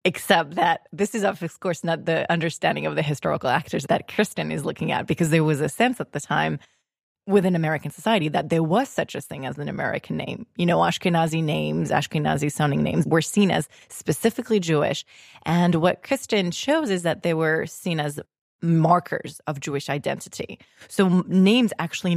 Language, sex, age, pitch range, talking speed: English, female, 20-39, 160-205 Hz, 180 wpm